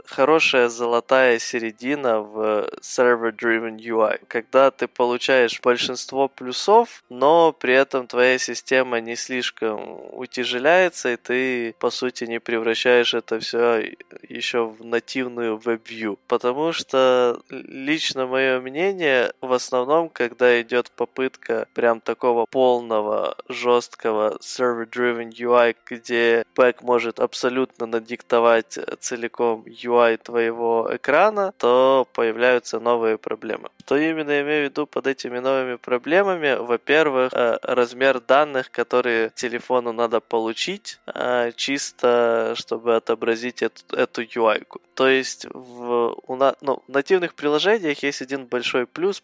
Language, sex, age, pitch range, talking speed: Ukrainian, male, 20-39, 115-135 Hz, 120 wpm